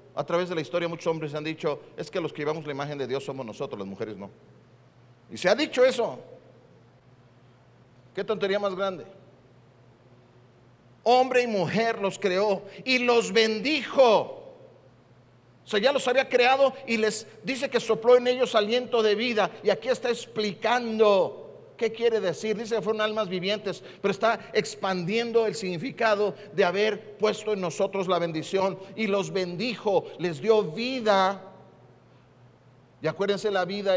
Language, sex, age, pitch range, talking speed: Spanish, male, 50-69, 145-225 Hz, 160 wpm